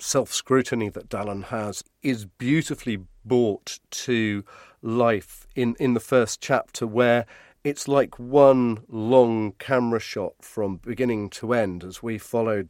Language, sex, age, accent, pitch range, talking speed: English, male, 40-59, British, 115-150 Hz, 130 wpm